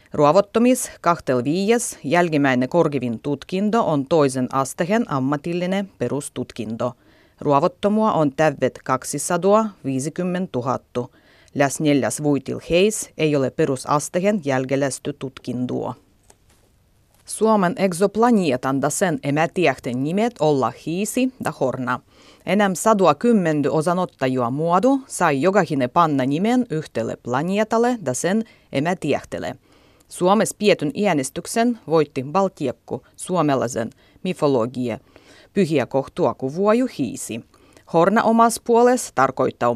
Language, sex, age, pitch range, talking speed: Finnish, female, 30-49, 130-195 Hz, 95 wpm